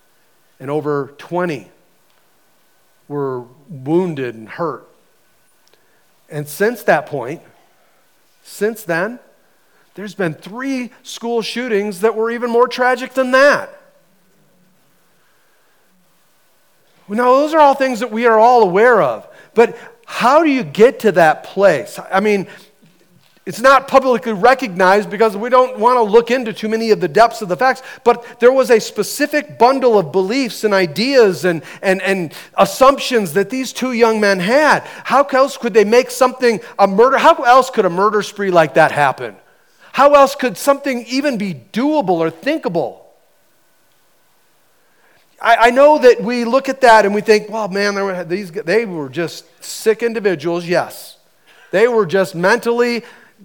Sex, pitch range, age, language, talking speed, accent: male, 190-255 Hz, 40-59, English, 150 wpm, American